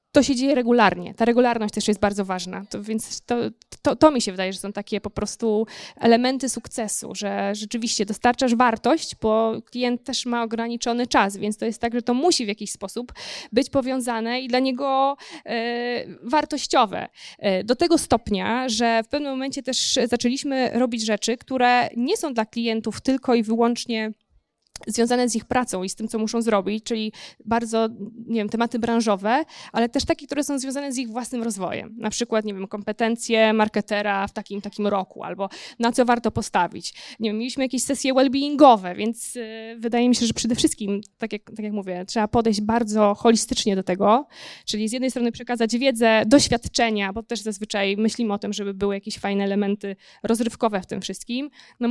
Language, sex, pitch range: Polish, female, 210-245 Hz